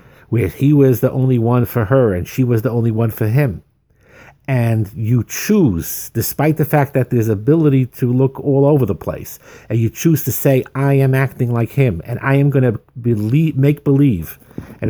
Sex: male